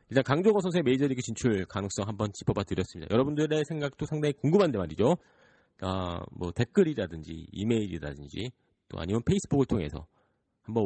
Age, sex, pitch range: 40-59, male, 95-150 Hz